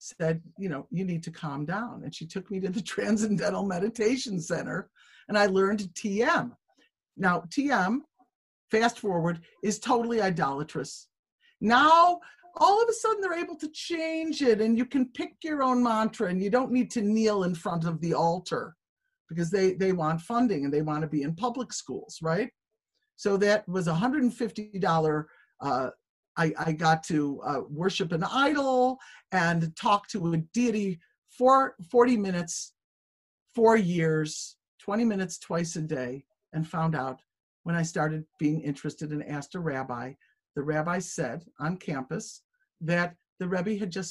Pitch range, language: 160-235 Hz, English